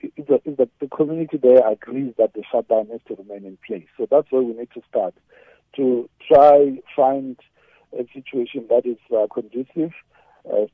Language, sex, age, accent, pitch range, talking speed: English, male, 60-79, South African, 120-165 Hz, 185 wpm